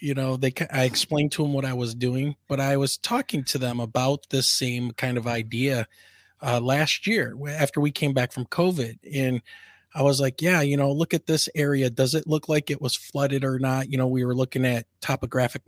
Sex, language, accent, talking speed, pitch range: male, English, American, 225 wpm, 125-155 Hz